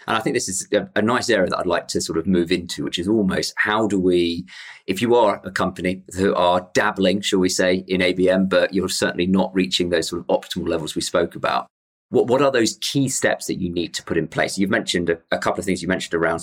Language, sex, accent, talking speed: English, male, British, 265 wpm